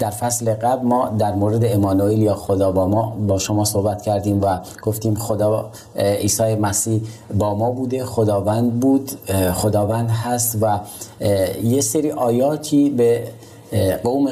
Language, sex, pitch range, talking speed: Persian, male, 100-120 Hz, 140 wpm